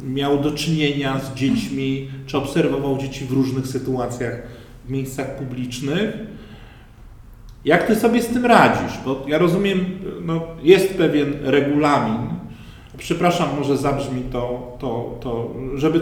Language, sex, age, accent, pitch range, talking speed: Polish, male, 40-59, native, 140-180 Hz, 125 wpm